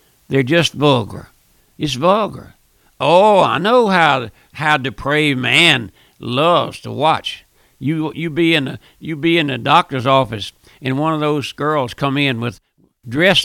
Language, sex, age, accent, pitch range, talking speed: English, male, 60-79, American, 130-160 Hz, 155 wpm